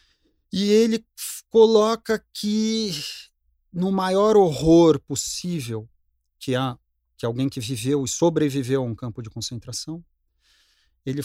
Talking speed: 115 wpm